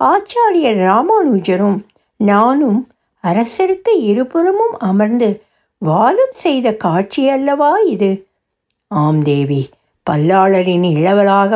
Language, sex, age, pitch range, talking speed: Tamil, female, 60-79, 190-305 Hz, 75 wpm